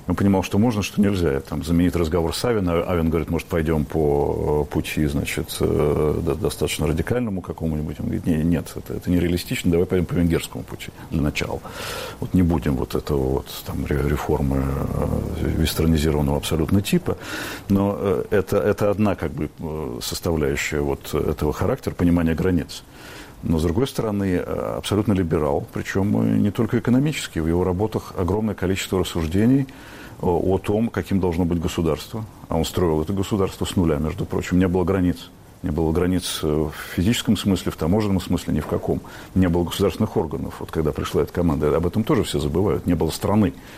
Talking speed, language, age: 165 wpm, Russian, 50-69